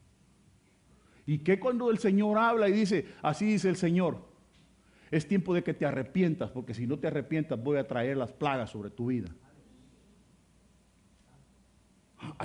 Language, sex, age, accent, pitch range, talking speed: Spanish, male, 50-69, Venezuelan, 140-200 Hz, 155 wpm